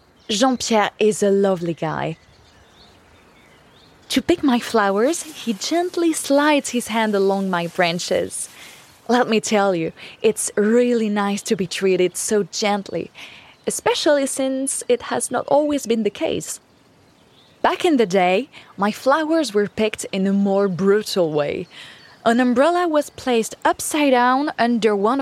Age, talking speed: 20-39, 140 wpm